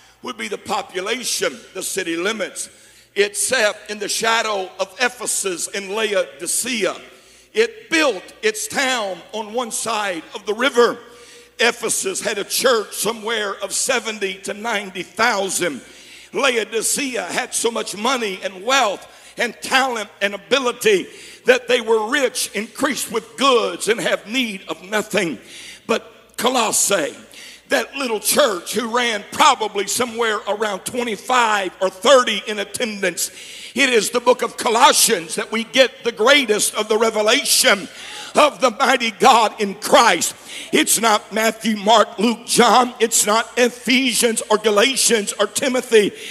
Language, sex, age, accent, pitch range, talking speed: English, male, 60-79, American, 210-270 Hz, 135 wpm